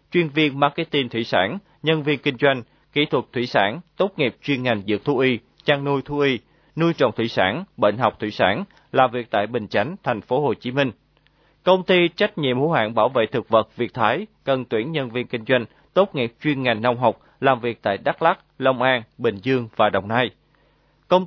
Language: Vietnamese